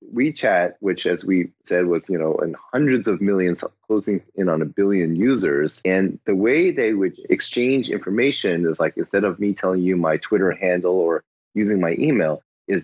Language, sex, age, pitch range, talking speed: English, male, 30-49, 90-105 Hz, 185 wpm